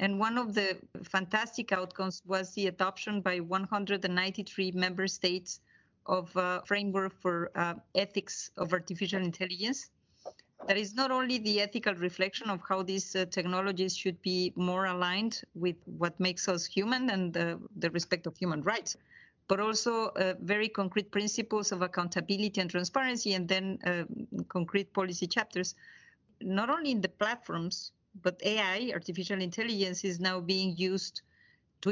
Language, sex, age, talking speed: English, female, 30-49, 150 wpm